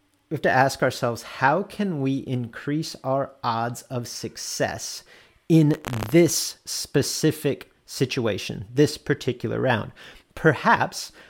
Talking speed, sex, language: 110 wpm, male, English